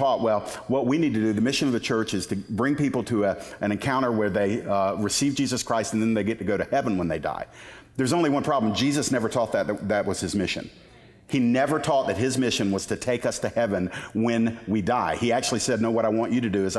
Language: English